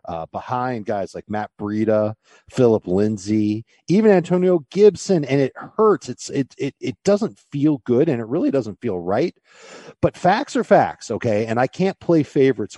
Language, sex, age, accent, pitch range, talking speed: English, male, 40-59, American, 105-140 Hz, 175 wpm